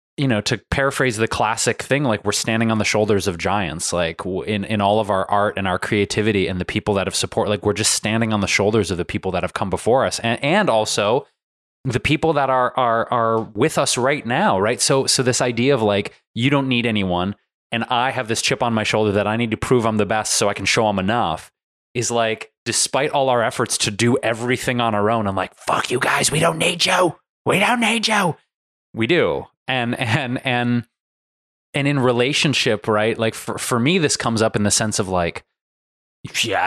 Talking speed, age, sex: 225 wpm, 20-39, male